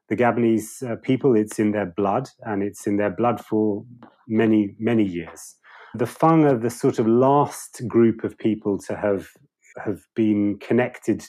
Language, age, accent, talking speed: English, 30-49, British, 170 wpm